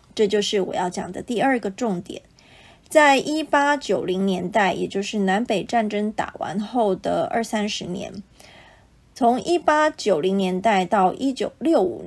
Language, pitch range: Chinese, 200-265 Hz